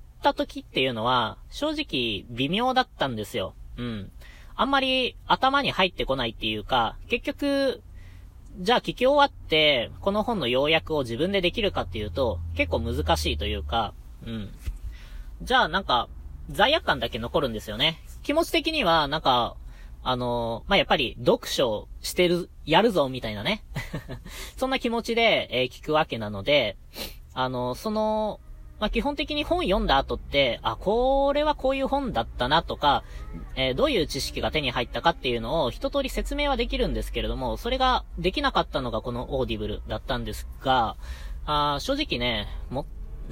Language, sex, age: Japanese, female, 20-39